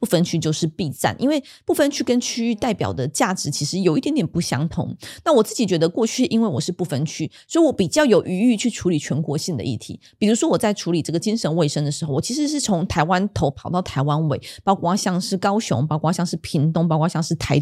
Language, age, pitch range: Chinese, 20-39, 150-210 Hz